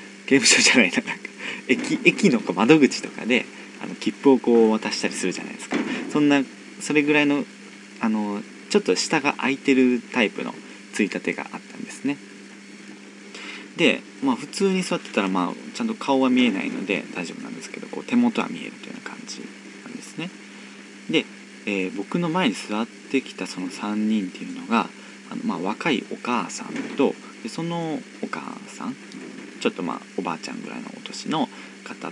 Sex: male